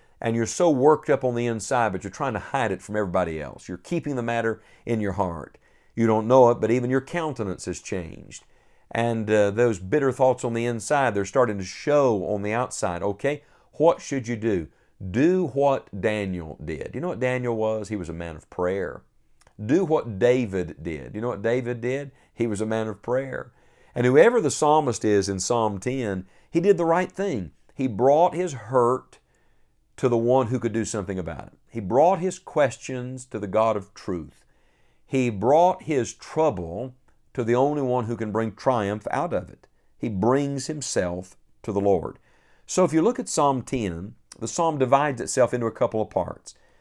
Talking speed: 200 wpm